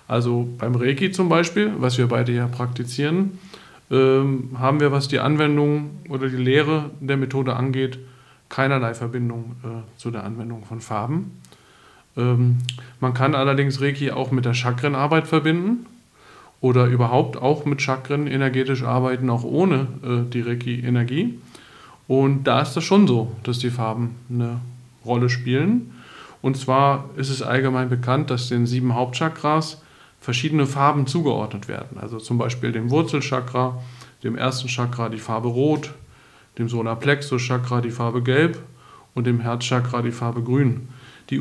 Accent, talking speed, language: German, 140 wpm, German